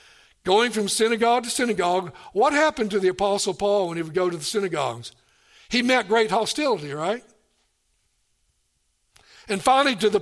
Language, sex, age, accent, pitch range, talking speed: English, male, 60-79, American, 165-230 Hz, 160 wpm